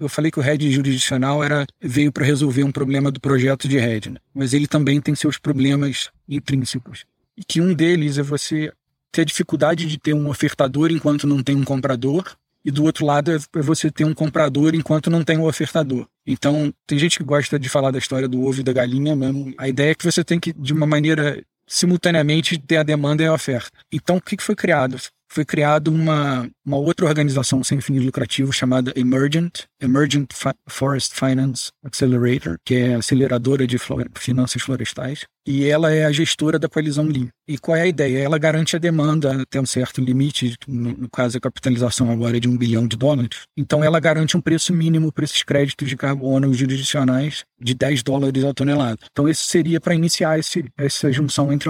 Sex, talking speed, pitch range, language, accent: male, 200 wpm, 130-155 Hz, Portuguese, Brazilian